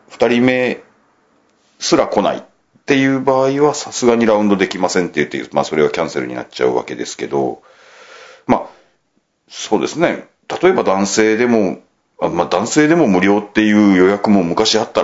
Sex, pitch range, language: male, 85-115 Hz, Japanese